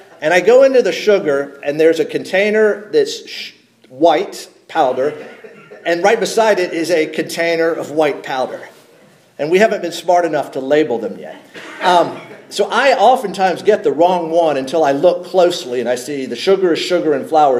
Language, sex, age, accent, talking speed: English, male, 50-69, American, 185 wpm